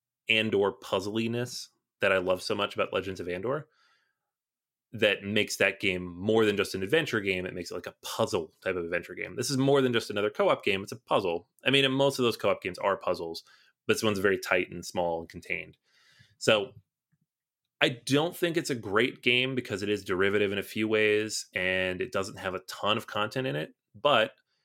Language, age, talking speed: English, 30-49, 210 wpm